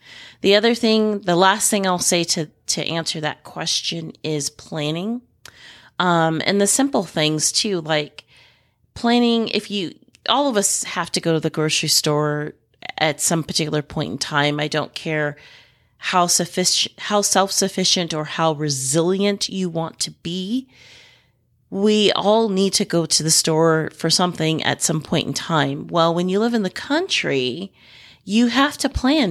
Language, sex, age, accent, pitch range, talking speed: English, female, 30-49, American, 155-195 Hz, 170 wpm